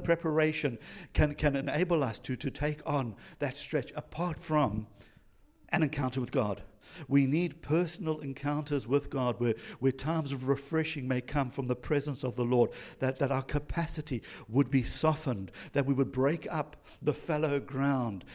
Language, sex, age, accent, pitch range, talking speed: English, male, 60-79, British, 135-165 Hz, 165 wpm